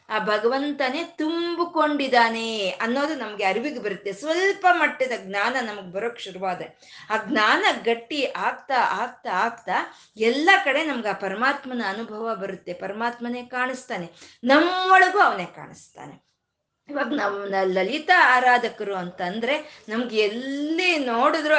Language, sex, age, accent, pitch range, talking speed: Kannada, female, 20-39, native, 210-290 Hz, 110 wpm